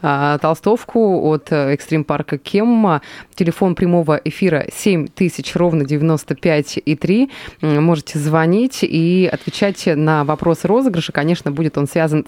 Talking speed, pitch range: 105 wpm, 145-185 Hz